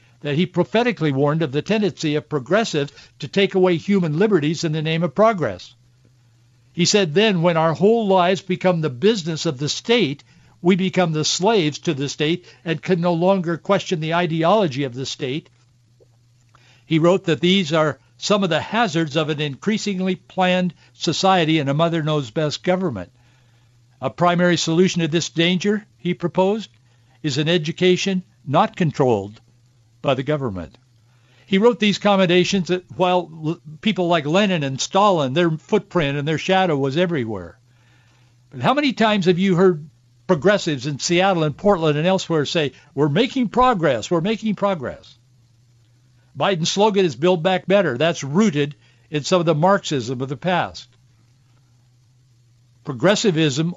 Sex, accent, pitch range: male, American, 125-185 Hz